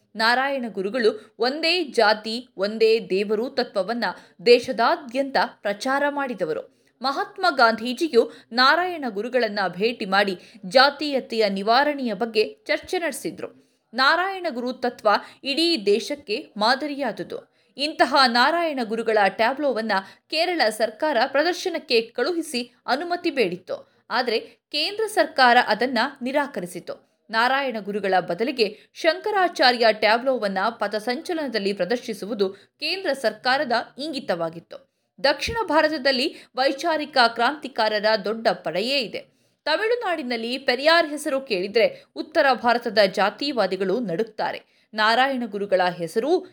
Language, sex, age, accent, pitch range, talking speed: Kannada, female, 20-39, native, 215-300 Hz, 90 wpm